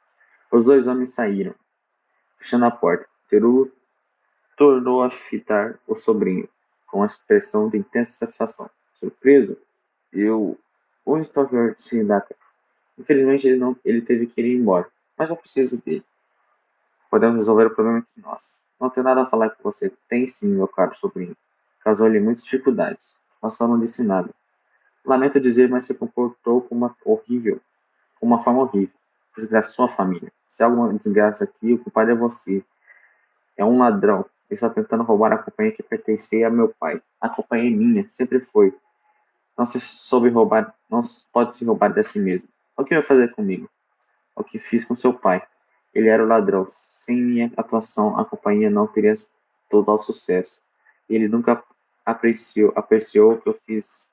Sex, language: male, Portuguese